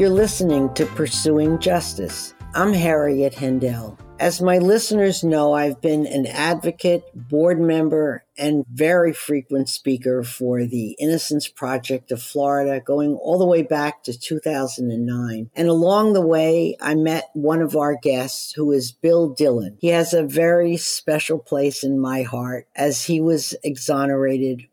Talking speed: 150 wpm